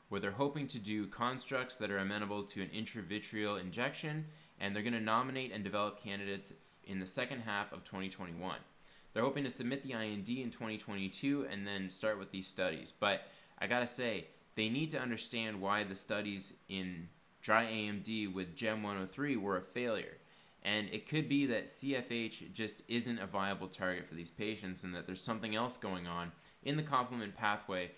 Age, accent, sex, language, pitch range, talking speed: 20-39, American, male, English, 95-125 Hz, 185 wpm